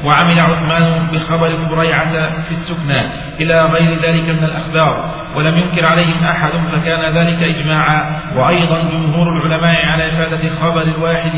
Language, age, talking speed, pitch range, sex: Arabic, 40-59, 130 wpm, 155-165 Hz, male